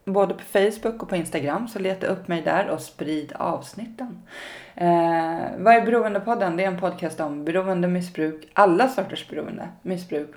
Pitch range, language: 165-195 Hz, Swedish